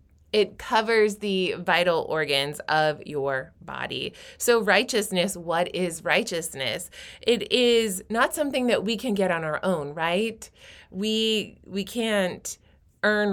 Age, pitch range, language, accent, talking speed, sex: 20-39, 155-205 Hz, English, American, 130 wpm, female